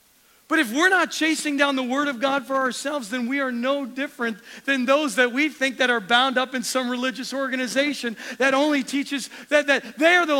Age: 40-59